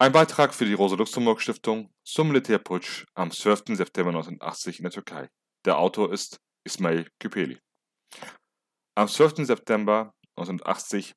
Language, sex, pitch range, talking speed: German, male, 90-115 Hz, 125 wpm